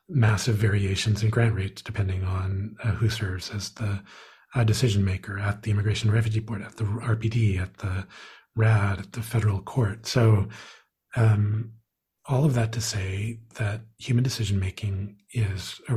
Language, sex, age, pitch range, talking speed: English, male, 40-59, 100-115 Hz, 160 wpm